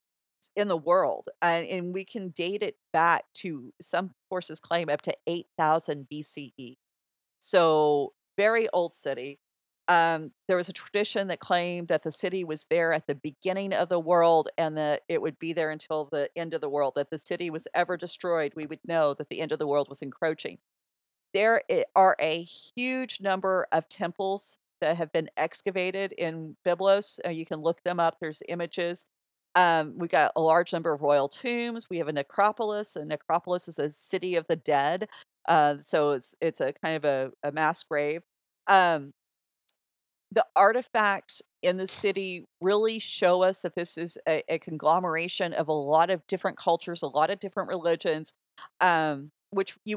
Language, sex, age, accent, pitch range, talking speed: English, female, 40-59, American, 155-190 Hz, 180 wpm